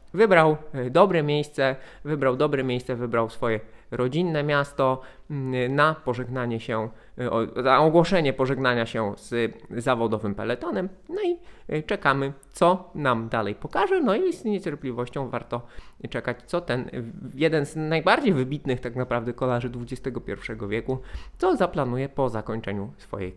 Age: 20-39